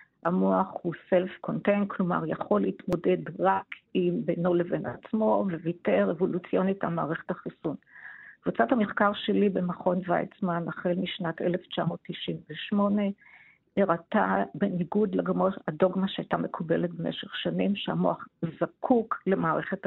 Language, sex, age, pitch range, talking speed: Hebrew, female, 50-69, 180-205 Hz, 105 wpm